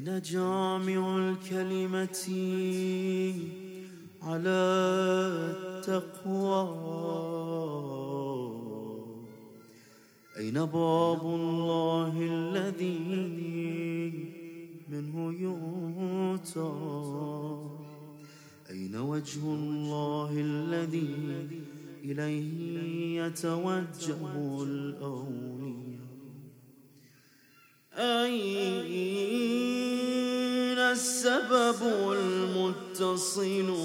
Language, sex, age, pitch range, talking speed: Arabic, male, 30-49, 165-230 Hz, 35 wpm